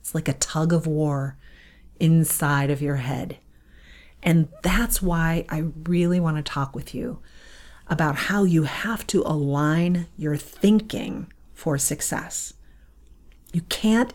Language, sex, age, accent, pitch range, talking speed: English, female, 40-59, American, 145-200 Hz, 130 wpm